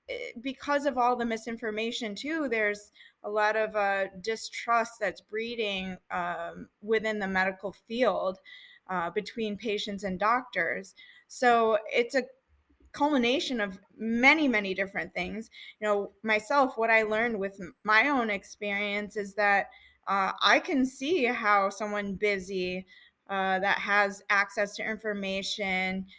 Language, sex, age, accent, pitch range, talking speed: English, female, 20-39, American, 200-250 Hz, 135 wpm